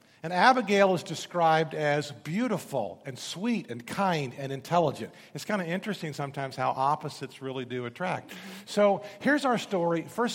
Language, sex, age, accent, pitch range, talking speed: English, male, 50-69, American, 160-215 Hz, 155 wpm